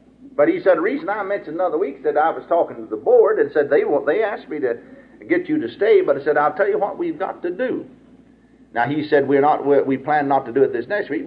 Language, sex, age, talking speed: English, male, 50-69, 290 wpm